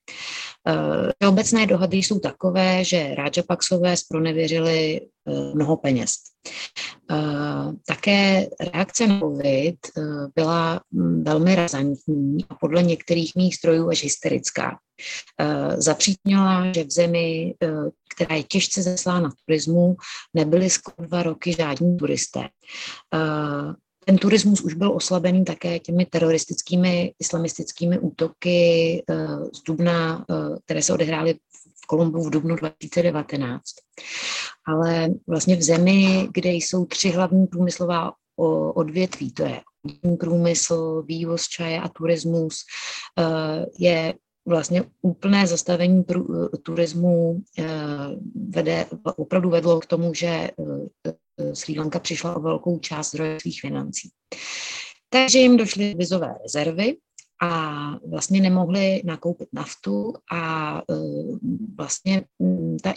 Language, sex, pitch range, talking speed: Czech, female, 160-180 Hz, 110 wpm